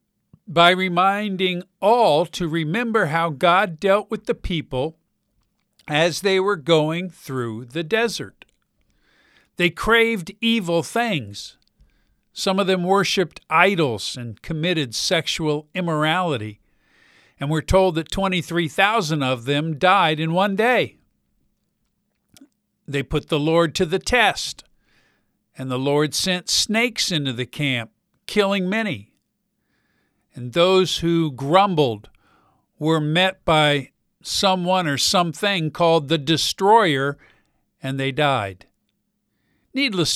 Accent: American